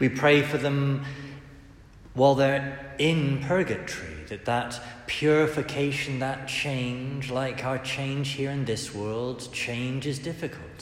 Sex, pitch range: male, 100-130 Hz